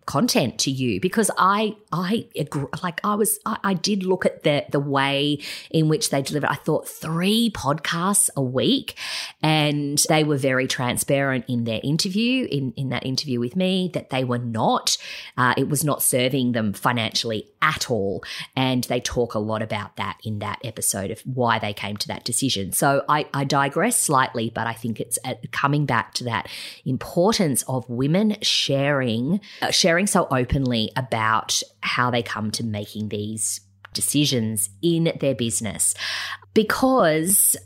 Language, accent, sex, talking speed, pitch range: English, Australian, female, 165 wpm, 120-160 Hz